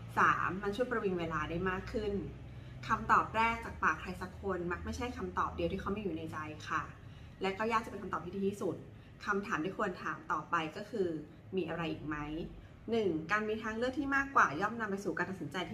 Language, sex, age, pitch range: Thai, female, 20-39, 160-215 Hz